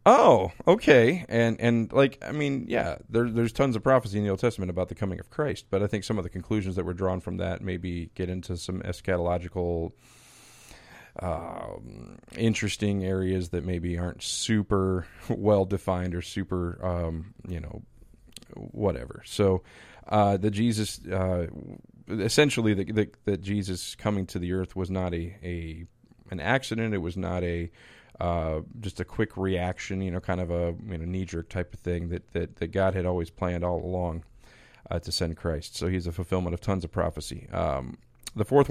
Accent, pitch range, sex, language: American, 90-110 Hz, male, English